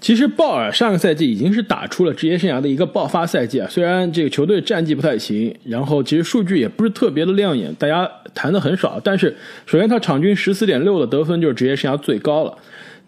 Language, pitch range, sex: Chinese, 140-215 Hz, male